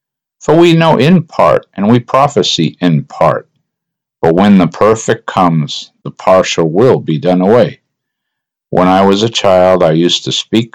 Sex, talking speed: male, 165 wpm